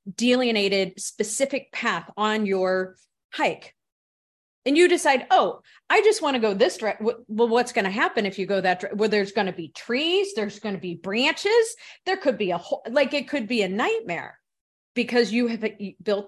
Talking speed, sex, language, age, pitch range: 195 wpm, female, English, 40-59, 190-240 Hz